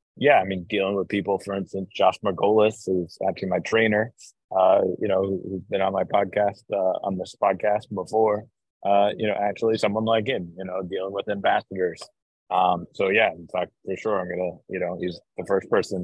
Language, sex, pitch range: English, male, 95-105 Hz